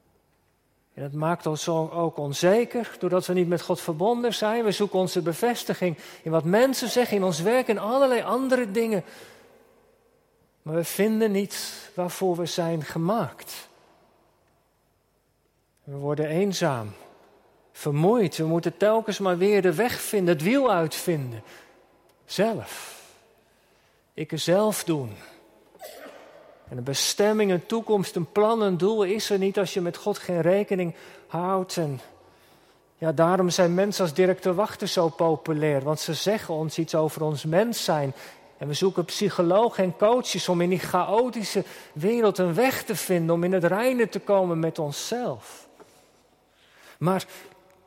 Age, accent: 40-59, Dutch